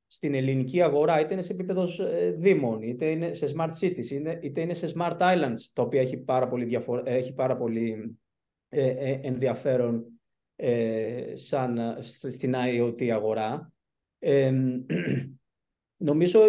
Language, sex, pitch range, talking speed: Greek, male, 125-165 Hz, 105 wpm